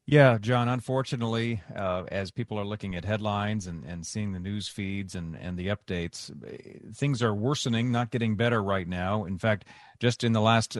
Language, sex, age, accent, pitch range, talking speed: English, male, 40-59, American, 100-120 Hz, 190 wpm